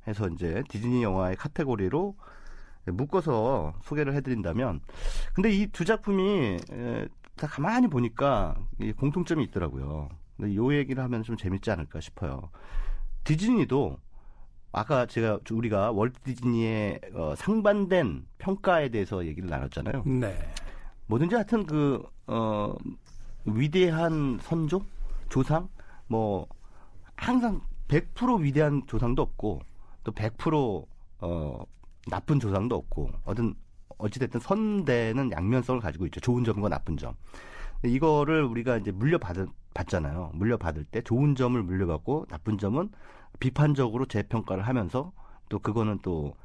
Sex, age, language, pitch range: male, 40-59, Korean, 95-145 Hz